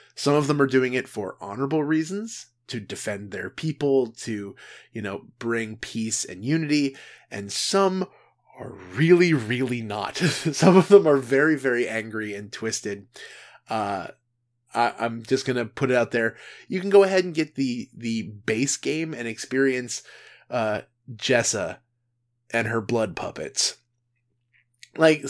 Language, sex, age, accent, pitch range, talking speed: English, male, 20-39, American, 115-135 Hz, 150 wpm